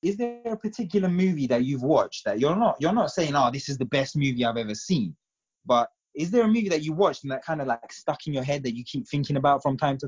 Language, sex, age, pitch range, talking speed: English, male, 20-39, 110-145 Hz, 285 wpm